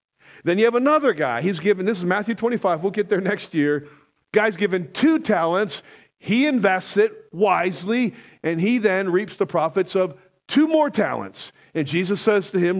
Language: English